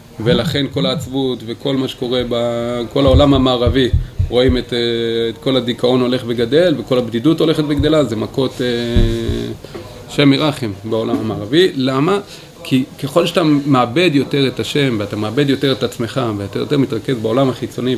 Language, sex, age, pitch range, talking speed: Hebrew, male, 30-49, 120-155 Hz, 145 wpm